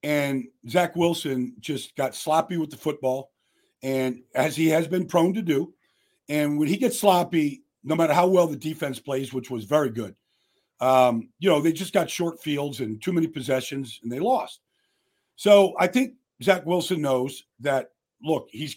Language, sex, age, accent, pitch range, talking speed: English, male, 50-69, American, 145-190 Hz, 180 wpm